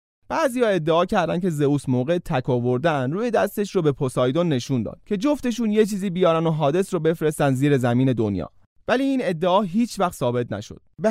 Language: Persian